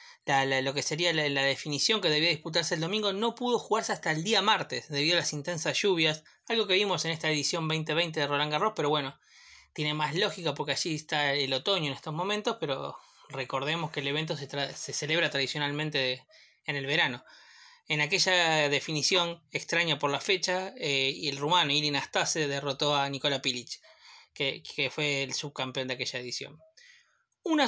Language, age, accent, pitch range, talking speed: Spanish, 20-39, Argentinian, 145-185 Hz, 190 wpm